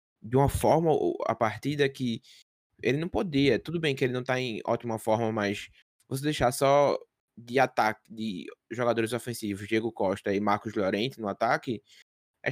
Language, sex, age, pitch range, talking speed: Portuguese, male, 20-39, 105-125 Hz, 175 wpm